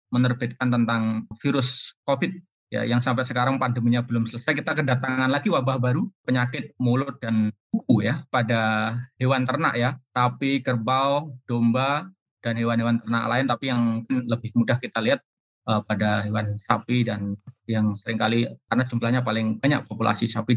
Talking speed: 150 wpm